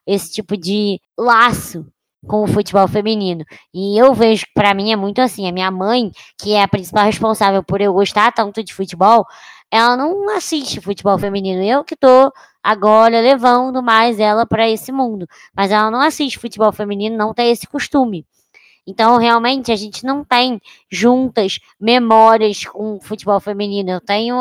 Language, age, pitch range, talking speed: Portuguese, 20-39, 195-235 Hz, 170 wpm